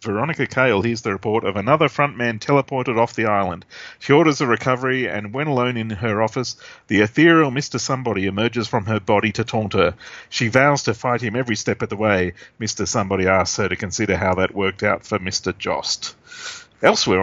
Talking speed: 200 wpm